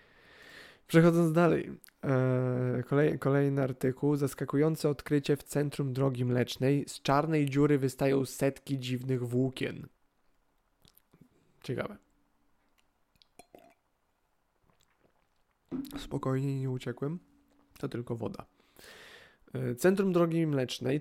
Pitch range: 135-155 Hz